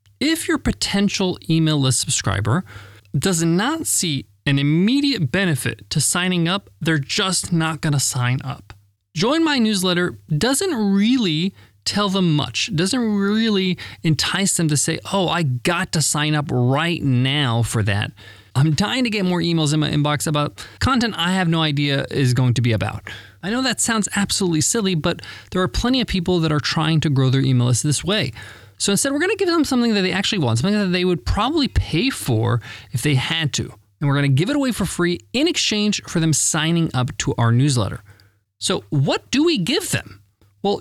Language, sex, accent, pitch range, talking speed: English, male, American, 125-200 Hz, 200 wpm